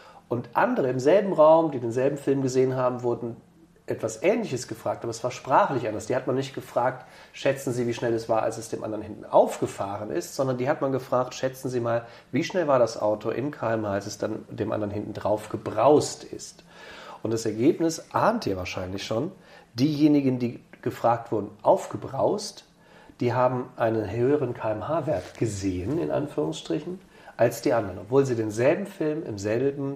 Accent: German